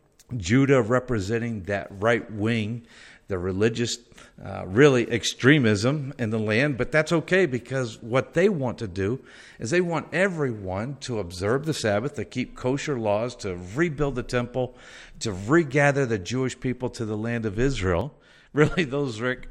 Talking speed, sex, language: 155 wpm, male, English